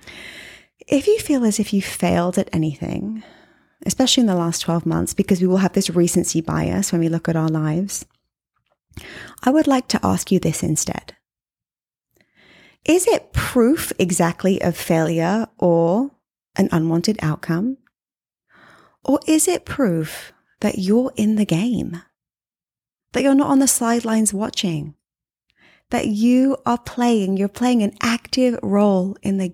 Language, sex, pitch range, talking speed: English, female, 175-245 Hz, 150 wpm